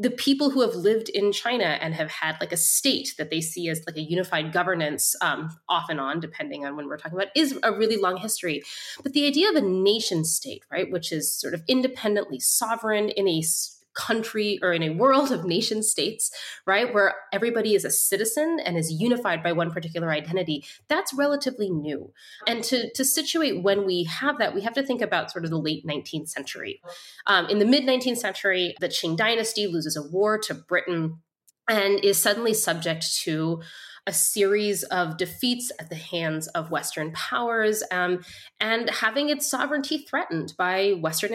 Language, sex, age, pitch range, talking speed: English, female, 20-39, 165-235 Hz, 190 wpm